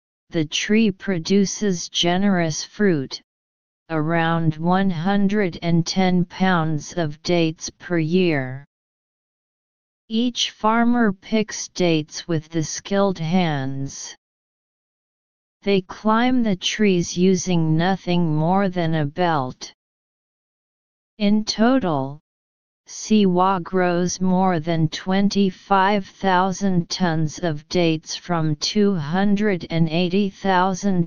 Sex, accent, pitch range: female, American, 160-200 Hz